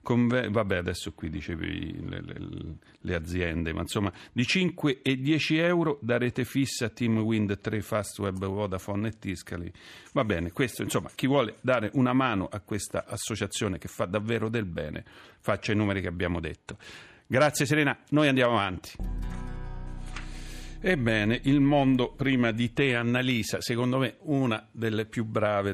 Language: Italian